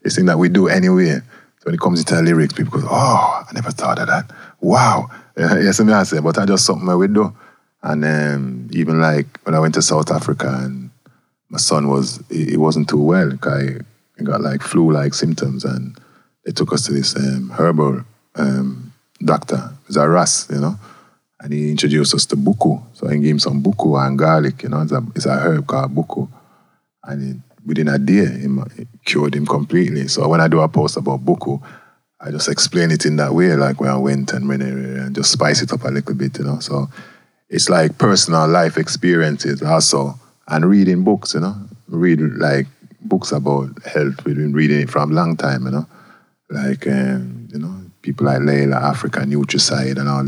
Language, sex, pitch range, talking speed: English, male, 70-80 Hz, 195 wpm